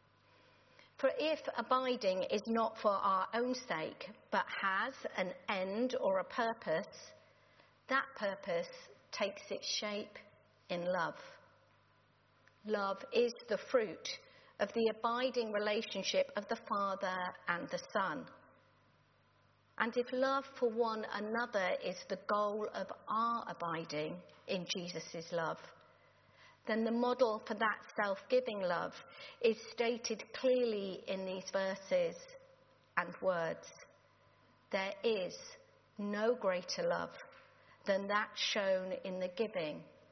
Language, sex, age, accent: English, female, 50-69, British